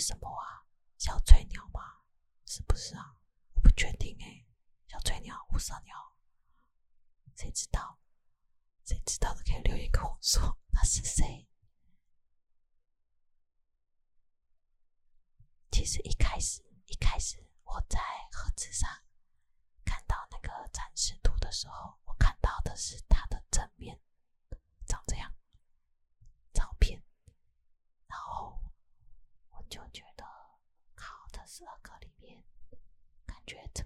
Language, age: Chinese, 20-39